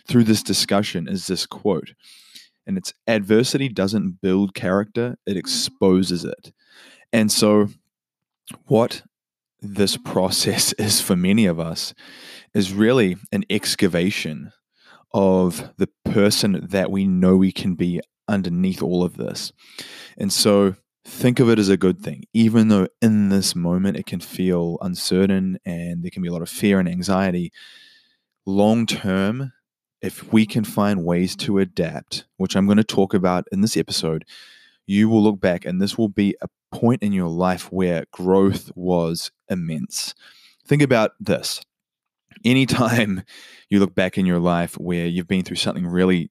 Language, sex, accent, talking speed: English, male, Australian, 155 wpm